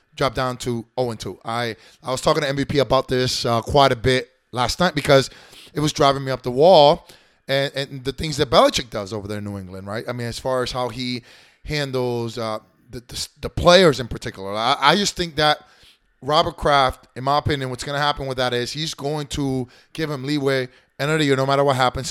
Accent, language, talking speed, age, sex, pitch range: American, English, 230 wpm, 30-49, male, 125-145 Hz